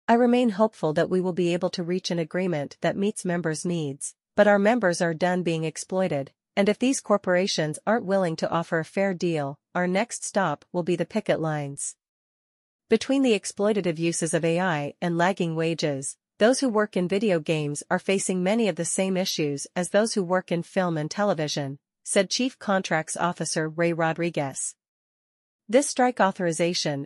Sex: female